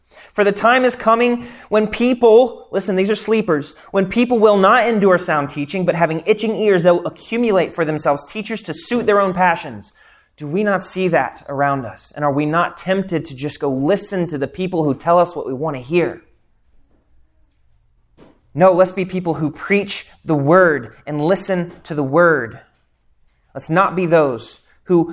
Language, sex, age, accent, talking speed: English, male, 30-49, American, 185 wpm